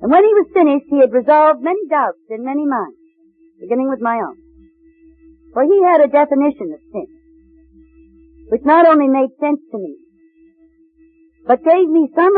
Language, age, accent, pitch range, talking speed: English, 60-79, American, 265-330 Hz, 170 wpm